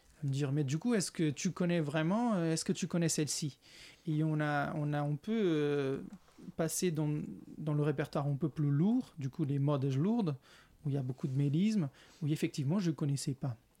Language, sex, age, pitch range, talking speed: French, male, 30-49, 145-175 Hz, 225 wpm